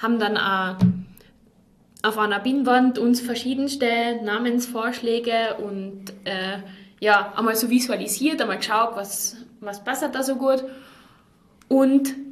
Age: 20-39